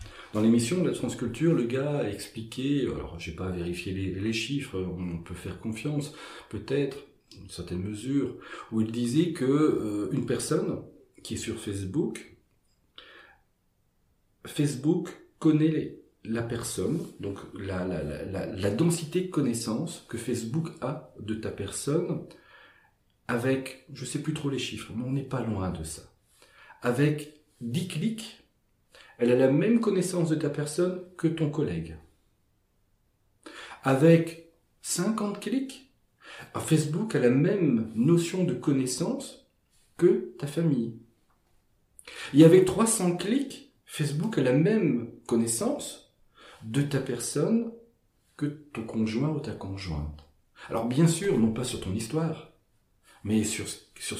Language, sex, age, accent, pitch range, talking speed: French, male, 40-59, French, 105-165 Hz, 135 wpm